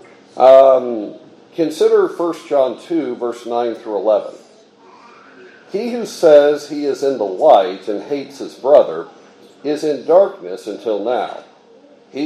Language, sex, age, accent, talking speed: English, male, 50-69, American, 130 wpm